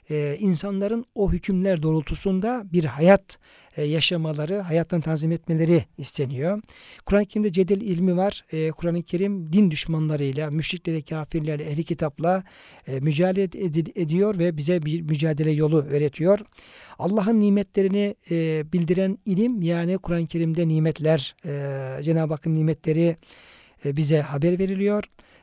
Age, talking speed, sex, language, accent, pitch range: 60-79, 110 wpm, male, Turkish, native, 160-195 Hz